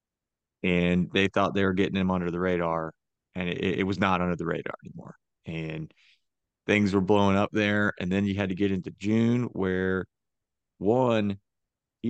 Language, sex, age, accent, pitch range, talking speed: English, male, 30-49, American, 90-105 Hz, 180 wpm